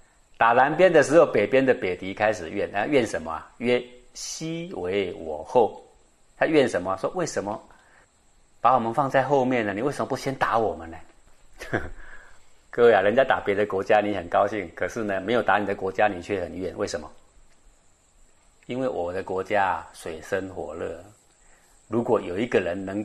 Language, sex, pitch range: Chinese, male, 105-145 Hz